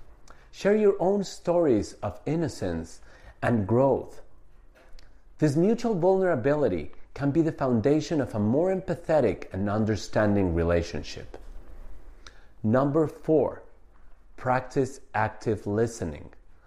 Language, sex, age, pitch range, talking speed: English, male, 40-59, 95-160 Hz, 95 wpm